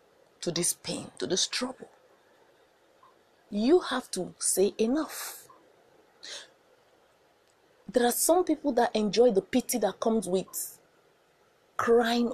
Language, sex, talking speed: English, female, 110 wpm